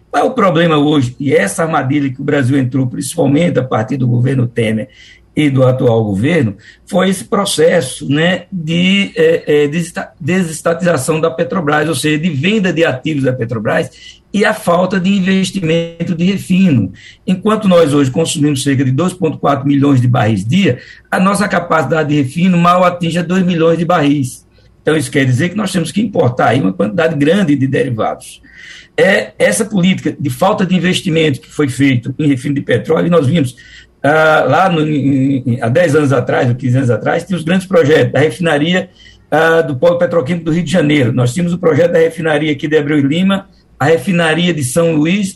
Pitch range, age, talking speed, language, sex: 140-180 Hz, 60-79, 190 wpm, Portuguese, male